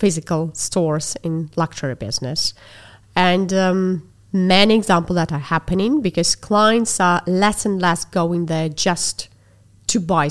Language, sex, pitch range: English, female, 165-200 Hz